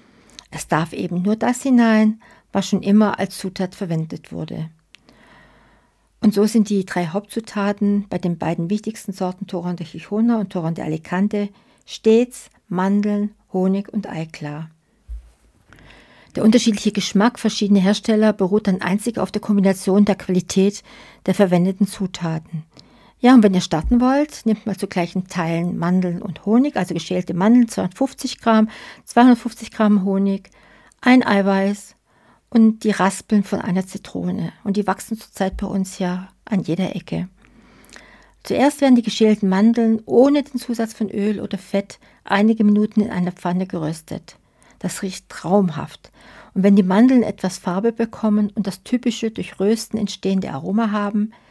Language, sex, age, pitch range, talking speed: German, female, 60-79, 185-220 Hz, 150 wpm